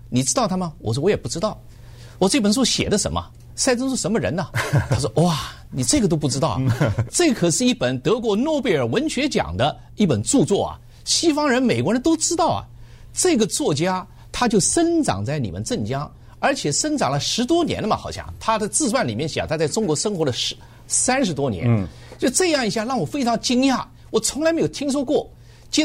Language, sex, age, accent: Chinese, male, 50-69, native